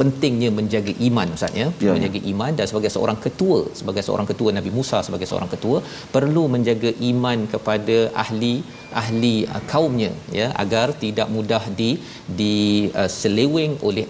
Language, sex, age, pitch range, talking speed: Malayalam, male, 40-59, 105-120 Hz, 140 wpm